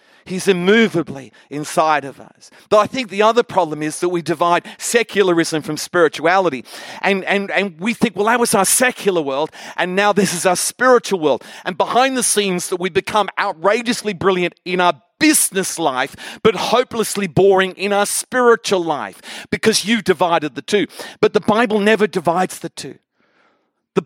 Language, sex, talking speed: English, male, 170 wpm